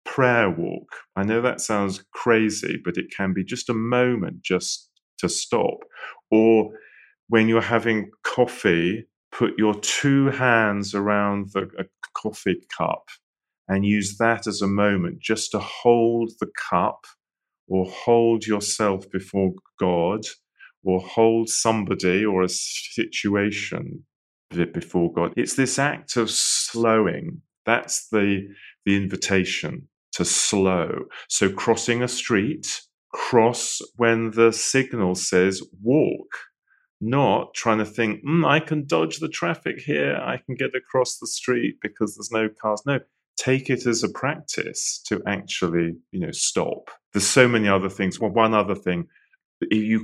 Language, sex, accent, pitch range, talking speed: English, male, British, 95-115 Hz, 140 wpm